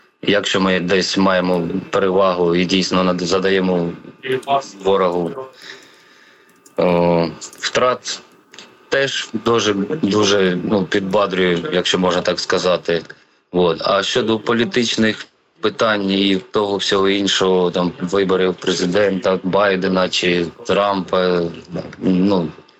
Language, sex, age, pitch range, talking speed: Ukrainian, male, 20-39, 90-100 Hz, 95 wpm